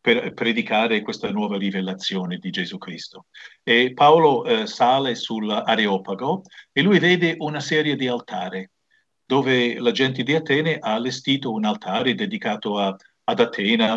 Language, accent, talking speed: Italian, native, 140 wpm